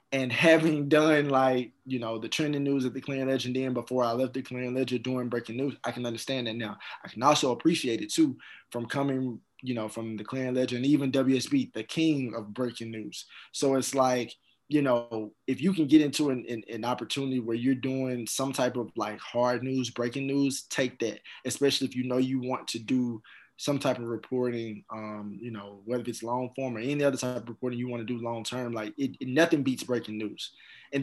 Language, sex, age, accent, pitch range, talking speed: English, male, 20-39, American, 115-130 Hz, 220 wpm